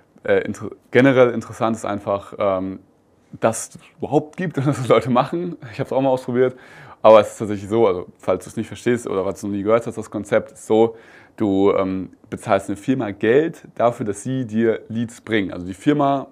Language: German